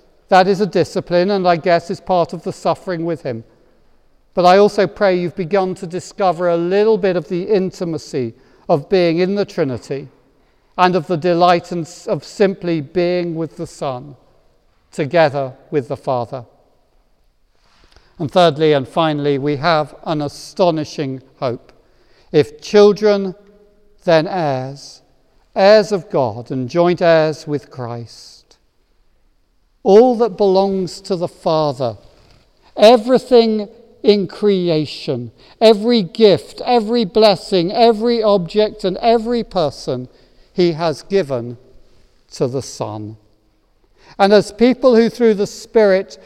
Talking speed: 130 wpm